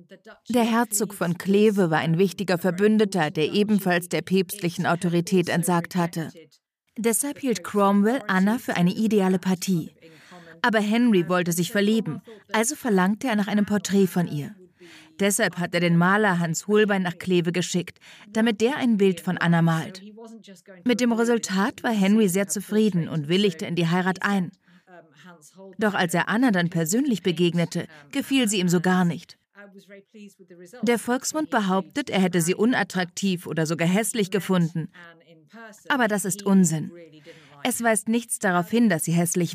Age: 30-49